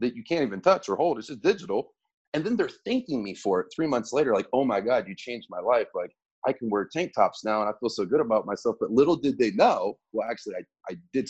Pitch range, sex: 110-145 Hz, male